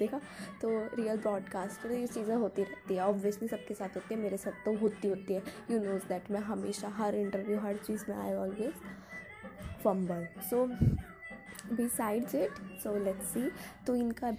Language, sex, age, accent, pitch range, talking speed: Hindi, female, 20-39, native, 200-235 Hz, 175 wpm